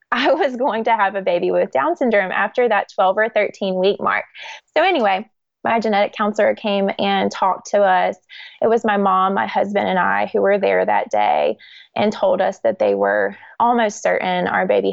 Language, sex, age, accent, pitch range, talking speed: English, female, 20-39, American, 195-245 Hz, 200 wpm